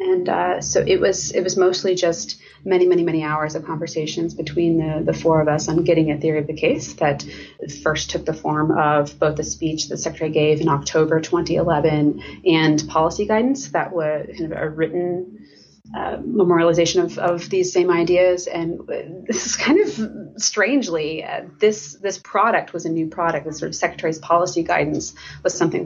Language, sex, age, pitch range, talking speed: English, female, 30-49, 155-175 Hz, 190 wpm